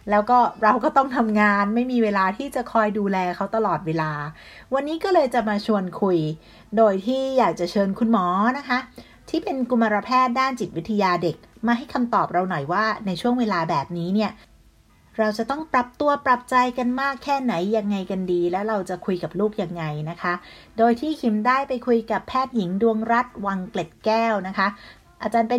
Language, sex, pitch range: Thai, female, 185-245 Hz